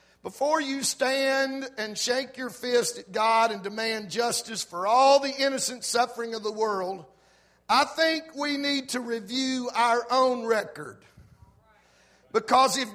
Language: English